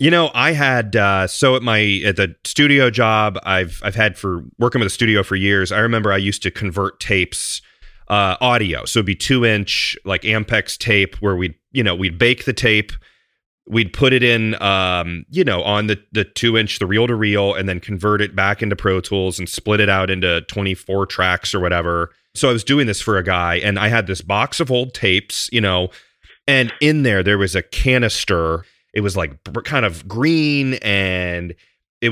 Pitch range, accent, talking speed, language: 95-120 Hz, American, 210 wpm, English